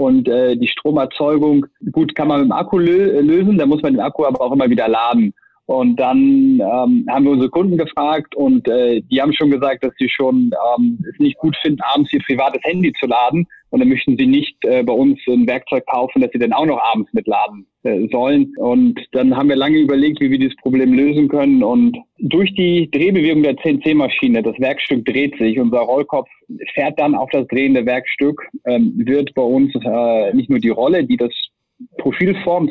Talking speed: 205 wpm